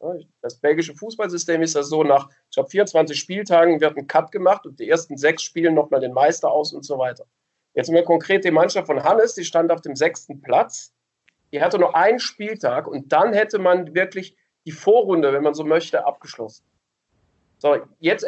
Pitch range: 150-200 Hz